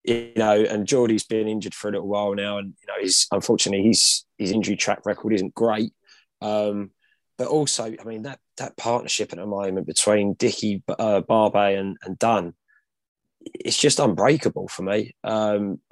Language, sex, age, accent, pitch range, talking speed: English, male, 20-39, British, 100-115 Hz, 180 wpm